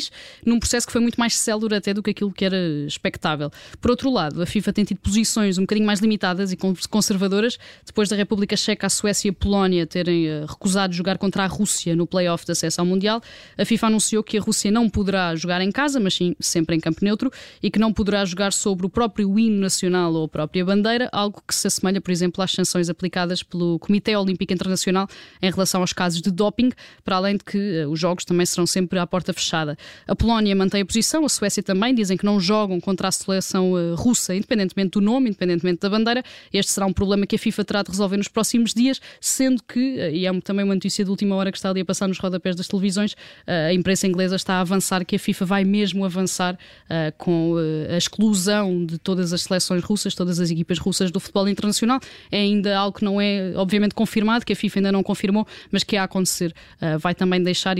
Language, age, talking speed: Portuguese, 10-29, 220 wpm